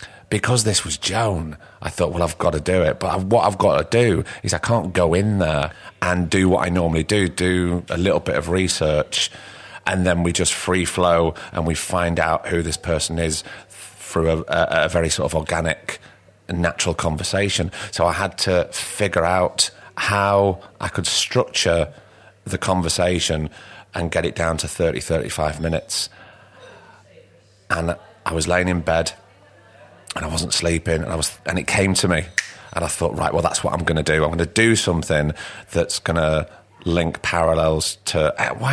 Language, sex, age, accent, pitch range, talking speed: English, male, 30-49, British, 80-100 Hz, 185 wpm